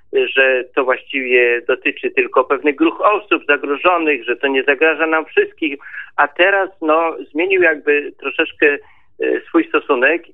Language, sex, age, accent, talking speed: Polish, male, 50-69, native, 135 wpm